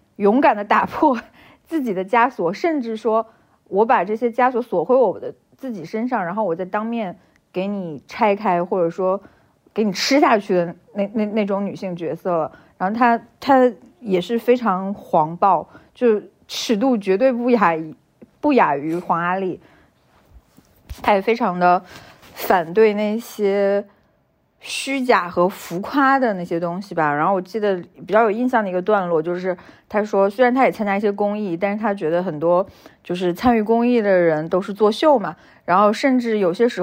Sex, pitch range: female, 180-235 Hz